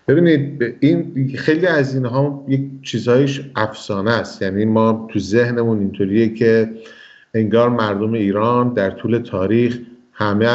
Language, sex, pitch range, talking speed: Persian, male, 110-135 Hz, 130 wpm